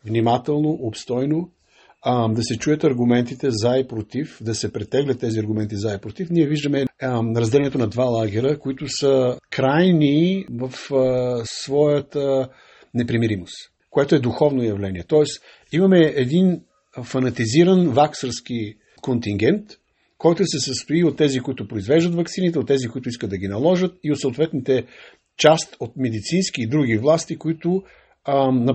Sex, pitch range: male, 120-165 Hz